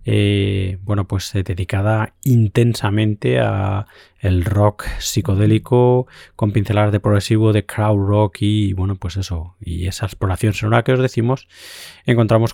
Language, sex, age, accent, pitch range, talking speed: Spanish, male, 20-39, Spanish, 100-115 Hz, 145 wpm